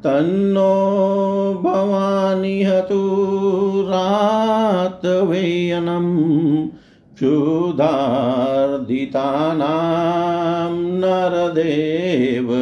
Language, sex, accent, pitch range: Hindi, male, native, 130-170 Hz